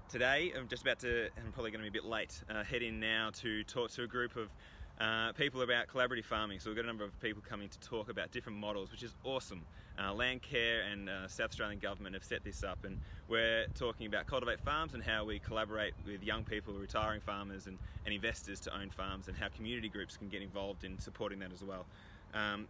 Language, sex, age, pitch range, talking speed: English, male, 20-39, 100-120 Hz, 235 wpm